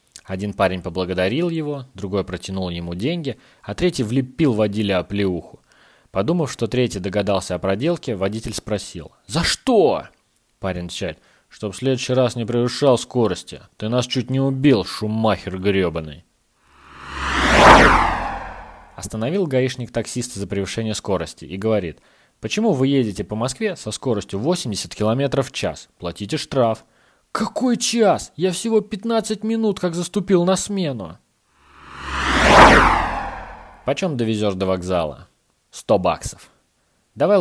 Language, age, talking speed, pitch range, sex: Russian, 30-49, 125 wpm, 95-140 Hz, male